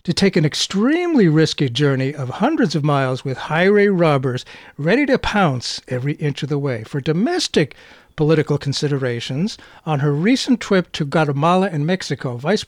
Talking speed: 160 wpm